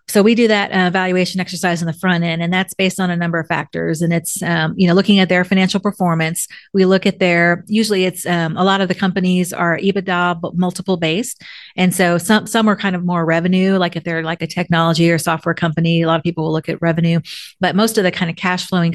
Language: English